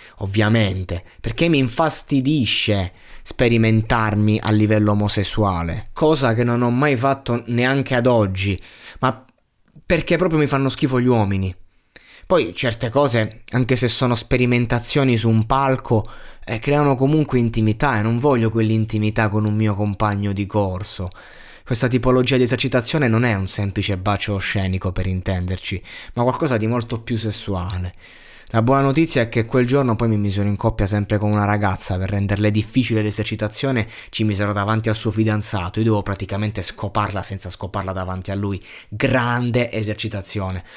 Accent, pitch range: native, 100-125 Hz